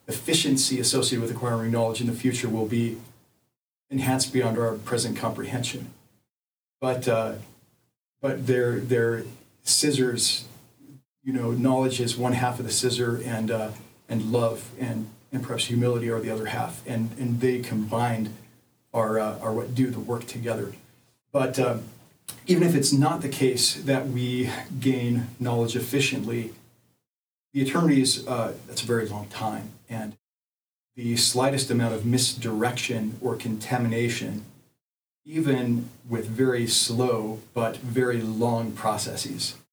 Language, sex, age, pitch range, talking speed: English, male, 40-59, 115-130 Hz, 140 wpm